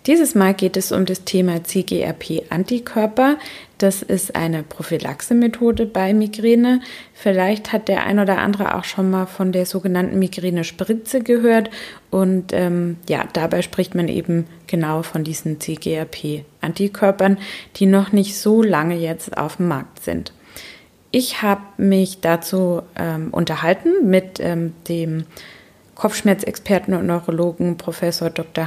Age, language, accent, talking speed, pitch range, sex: 20-39, German, German, 130 wpm, 170-210 Hz, female